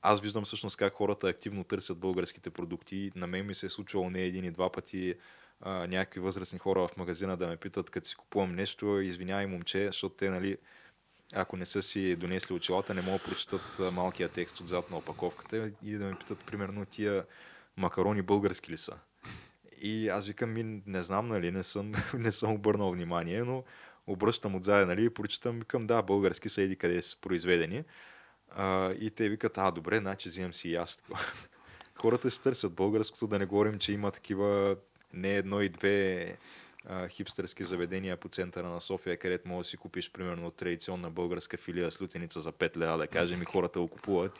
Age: 20-39